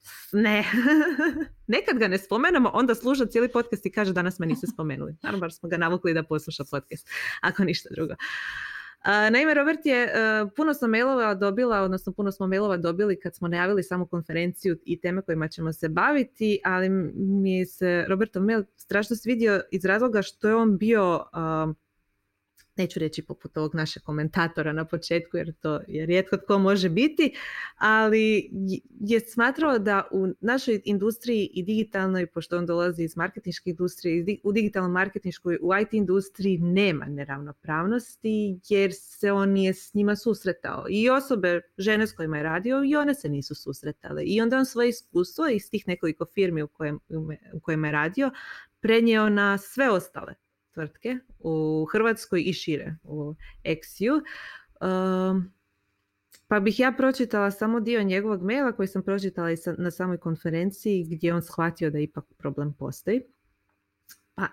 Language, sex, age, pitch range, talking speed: Croatian, female, 20-39, 165-220 Hz, 155 wpm